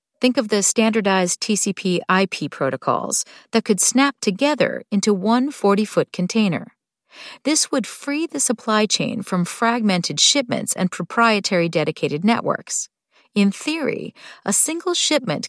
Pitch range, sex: 190-270 Hz, female